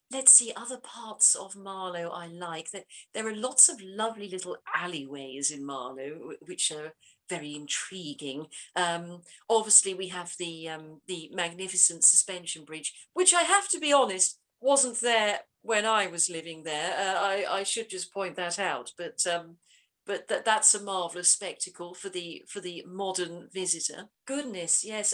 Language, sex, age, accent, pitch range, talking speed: English, female, 50-69, British, 165-215 Hz, 165 wpm